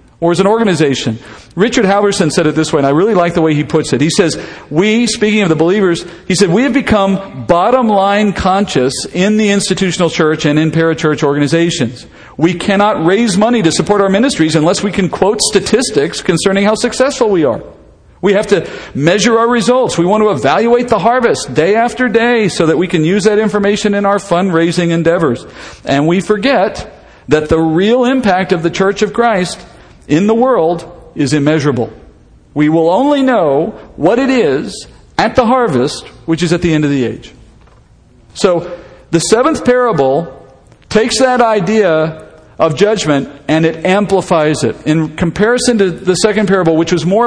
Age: 50-69